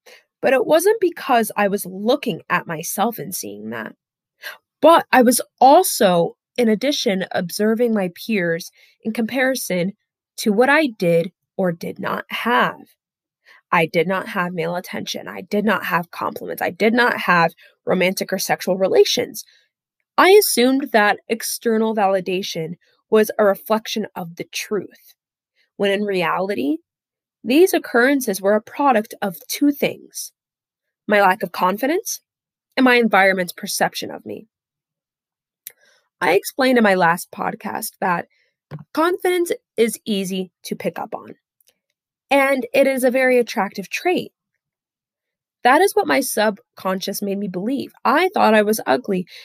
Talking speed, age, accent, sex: 140 wpm, 20-39, American, female